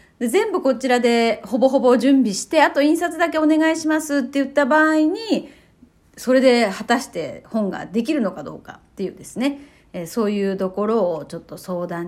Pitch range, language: 200-290 Hz, Japanese